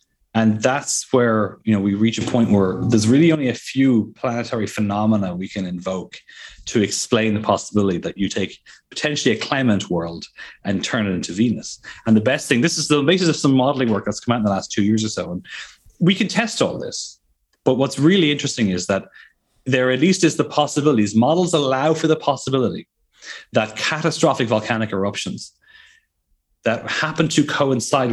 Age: 30-49